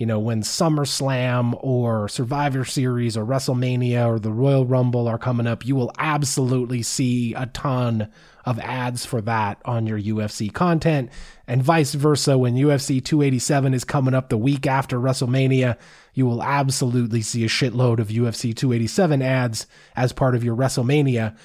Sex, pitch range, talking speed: male, 125-165 Hz, 160 wpm